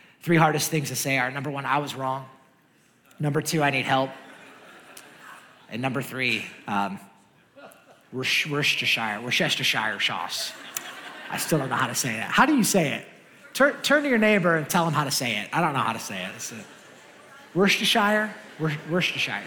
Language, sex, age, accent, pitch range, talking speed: English, male, 30-49, American, 130-175 Hz, 180 wpm